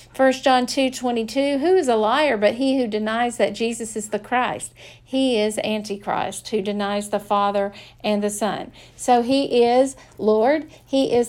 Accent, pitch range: American, 205-240 Hz